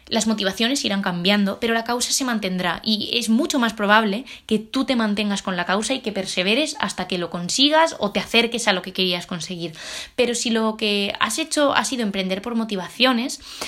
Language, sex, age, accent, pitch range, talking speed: Spanish, female, 20-39, Spanish, 195-240 Hz, 205 wpm